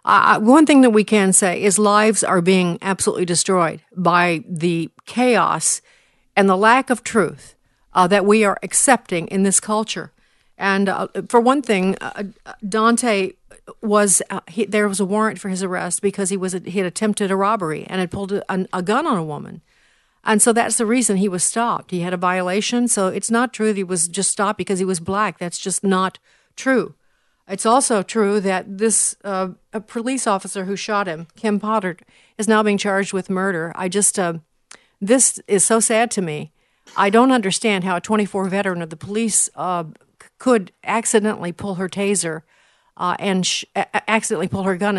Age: 50-69